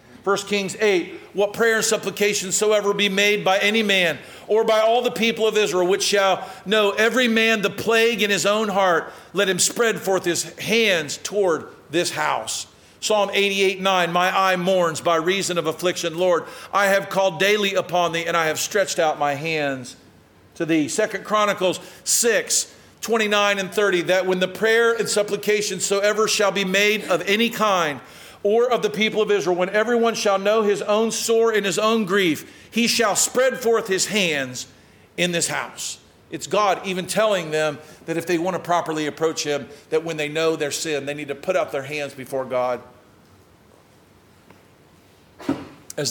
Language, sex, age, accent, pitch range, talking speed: English, male, 50-69, American, 165-210 Hz, 180 wpm